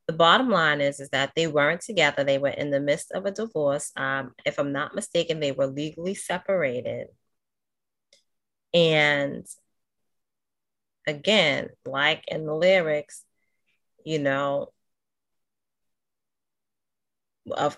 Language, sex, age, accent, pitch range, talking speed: English, female, 30-49, American, 145-185 Hz, 120 wpm